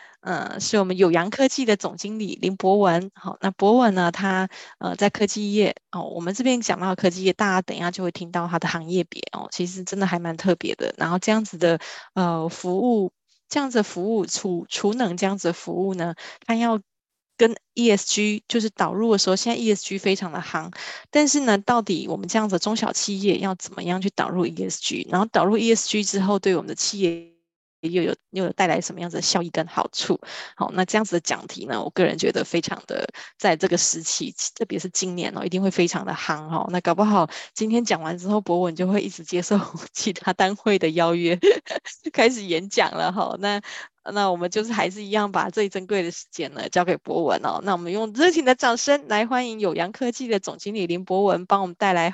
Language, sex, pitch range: Chinese, female, 180-220 Hz